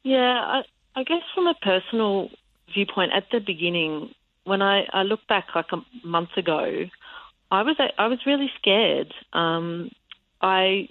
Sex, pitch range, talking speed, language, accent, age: female, 165-225 Hz, 155 wpm, English, Australian, 40-59